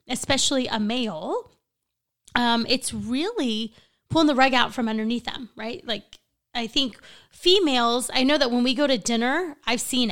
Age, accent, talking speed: 20-39, American, 165 wpm